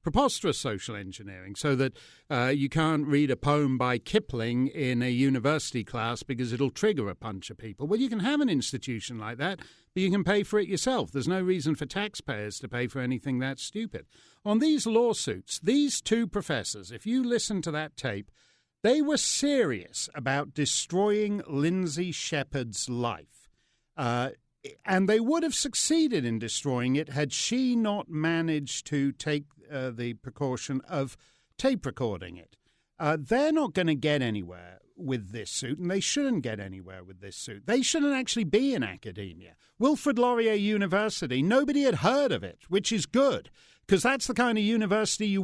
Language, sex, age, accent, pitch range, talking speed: English, male, 50-69, British, 130-215 Hz, 175 wpm